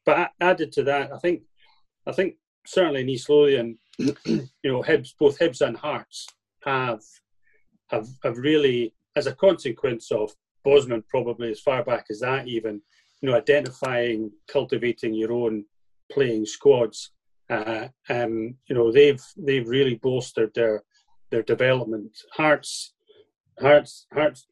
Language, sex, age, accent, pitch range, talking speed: English, male, 40-59, British, 120-150 Hz, 140 wpm